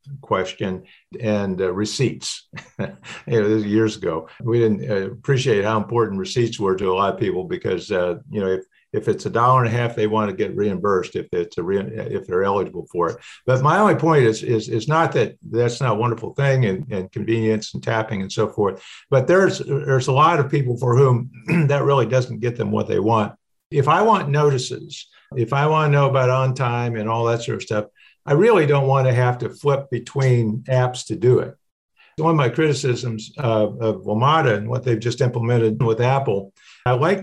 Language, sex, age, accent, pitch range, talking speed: English, male, 50-69, American, 110-135 Hz, 215 wpm